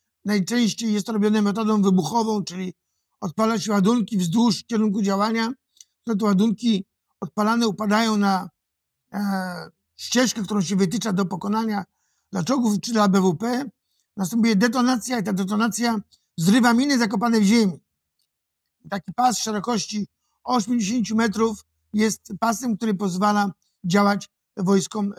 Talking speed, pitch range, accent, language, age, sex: 120 wpm, 200-230 Hz, native, Polish, 50-69, male